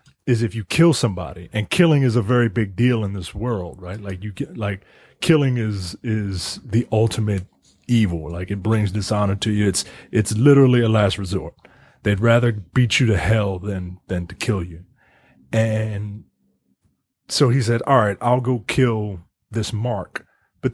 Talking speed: 175 wpm